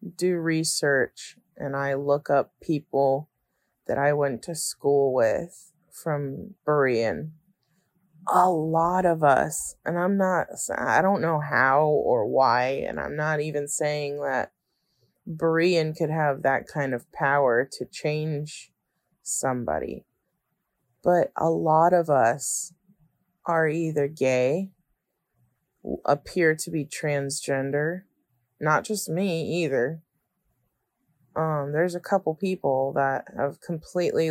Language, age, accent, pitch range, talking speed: English, 30-49, American, 140-165 Hz, 120 wpm